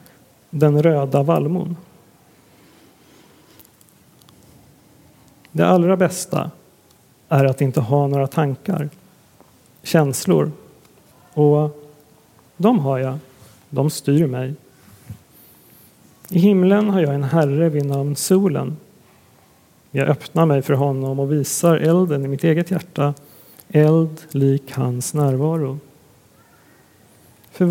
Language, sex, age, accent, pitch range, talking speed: Swedish, male, 40-59, native, 135-160 Hz, 100 wpm